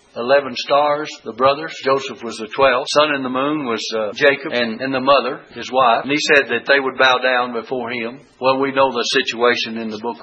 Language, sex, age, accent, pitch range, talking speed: English, male, 60-79, American, 120-150 Hz, 230 wpm